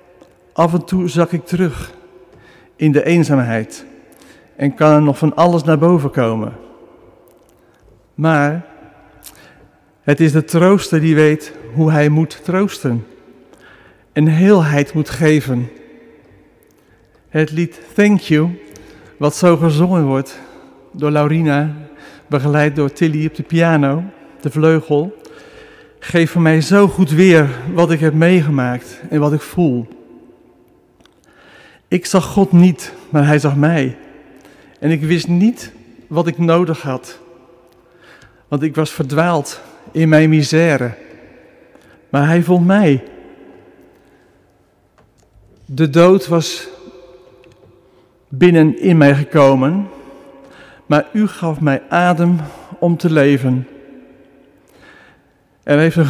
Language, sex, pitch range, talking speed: Dutch, male, 140-175 Hz, 120 wpm